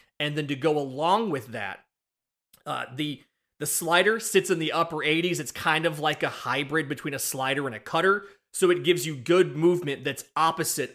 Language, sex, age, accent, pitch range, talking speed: English, male, 30-49, American, 135-170 Hz, 195 wpm